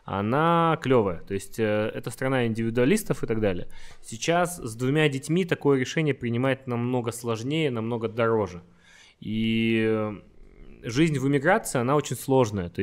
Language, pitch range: Russian, 105-135 Hz